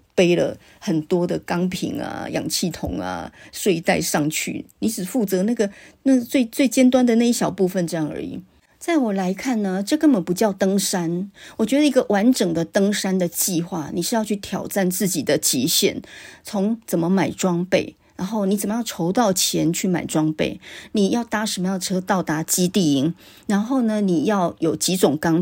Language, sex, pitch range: Chinese, female, 170-215 Hz